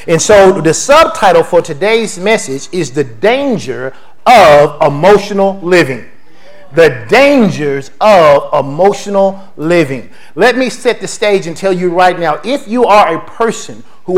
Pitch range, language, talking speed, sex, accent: 170-230 Hz, English, 145 wpm, male, American